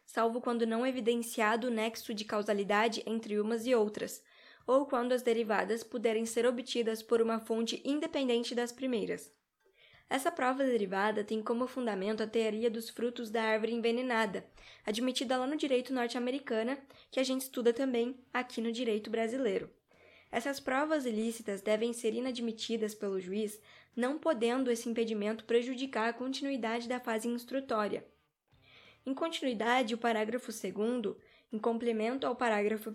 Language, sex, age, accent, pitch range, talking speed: Portuguese, female, 10-29, Brazilian, 225-255 Hz, 150 wpm